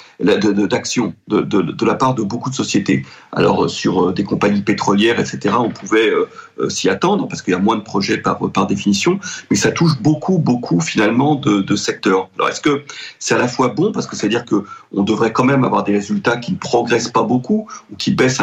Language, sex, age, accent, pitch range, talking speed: French, male, 40-59, French, 115-150 Hz, 220 wpm